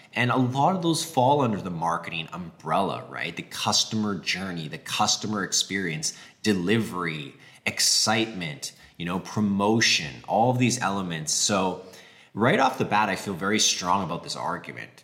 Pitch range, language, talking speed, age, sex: 90-115 Hz, English, 150 wpm, 20-39, male